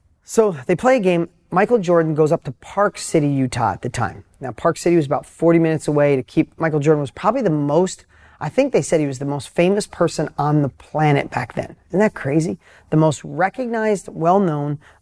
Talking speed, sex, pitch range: 215 wpm, male, 145-180 Hz